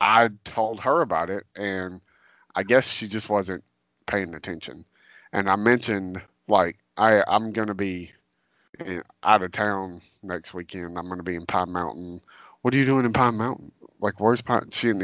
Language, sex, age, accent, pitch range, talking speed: English, male, 30-49, American, 90-120 Hz, 190 wpm